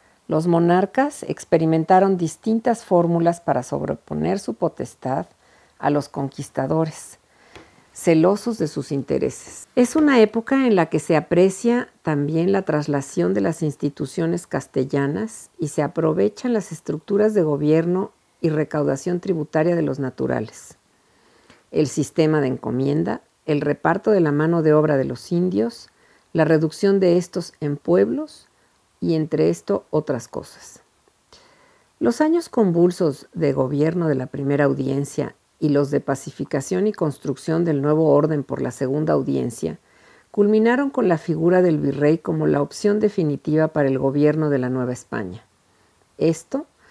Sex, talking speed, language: female, 140 wpm, Spanish